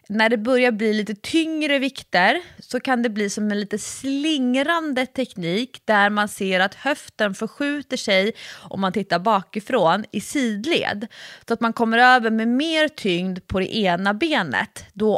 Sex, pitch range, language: female, 190-260 Hz, English